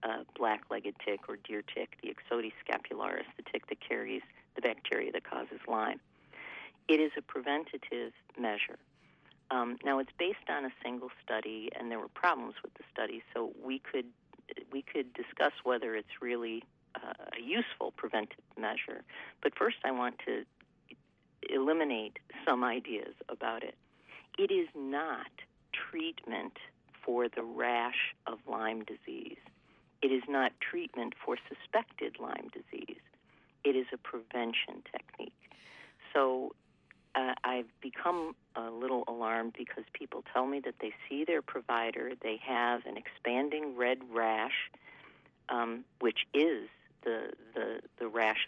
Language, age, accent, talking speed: English, 50-69, American, 140 wpm